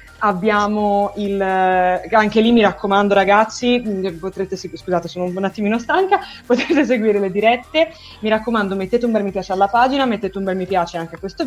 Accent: native